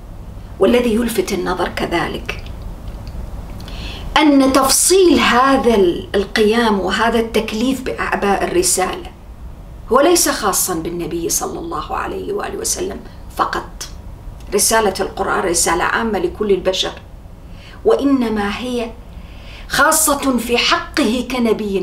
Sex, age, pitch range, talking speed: female, 40-59, 190-265 Hz, 95 wpm